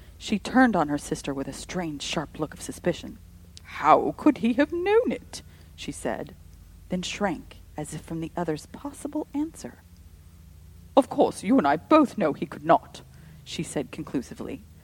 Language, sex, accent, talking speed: English, female, American, 170 wpm